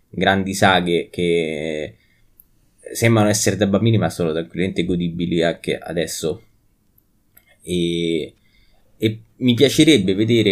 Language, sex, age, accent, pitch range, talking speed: Italian, male, 20-39, native, 90-110 Hz, 105 wpm